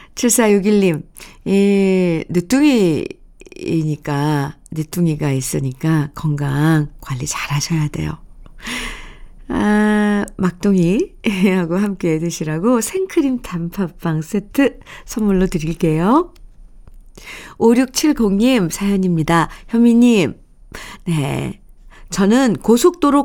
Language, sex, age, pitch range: Korean, female, 50-69, 165-225 Hz